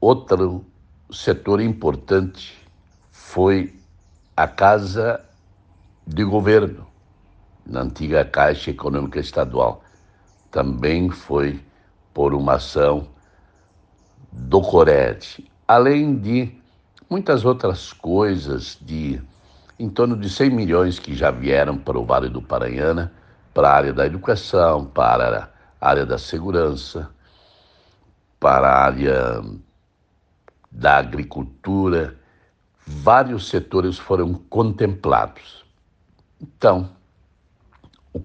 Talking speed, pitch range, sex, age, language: 95 wpm, 75-95 Hz, male, 60-79, Portuguese